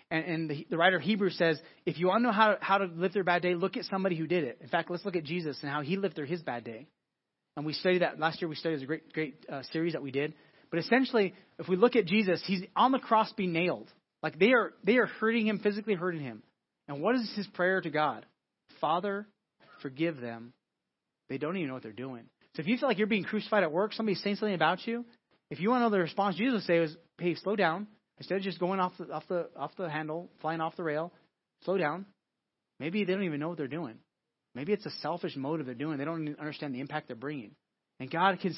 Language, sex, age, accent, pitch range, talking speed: English, male, 30-49, American, 160-205 Hz, 260 wpm